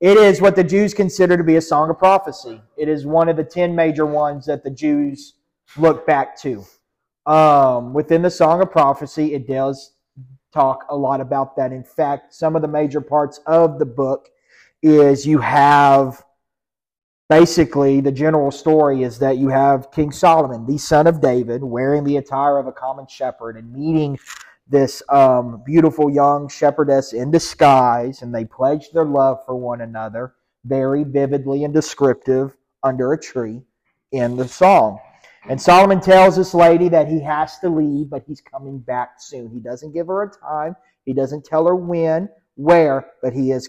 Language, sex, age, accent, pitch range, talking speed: English, male, 30-49, American, 130-160 Hz, 180 wpm